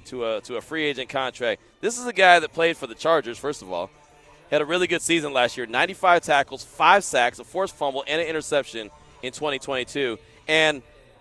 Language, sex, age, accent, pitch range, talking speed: English, male, 30-49, American, 145-180 Hz, 210 wpm